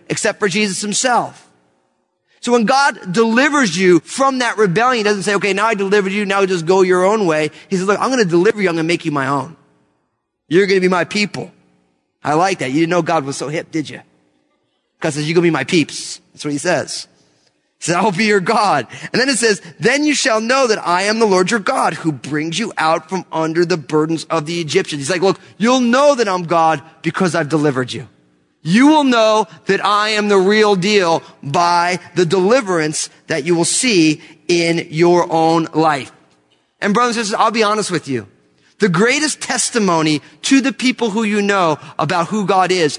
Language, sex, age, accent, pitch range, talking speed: English, male, 30-49, American, 155-215 Hz, 220 wpm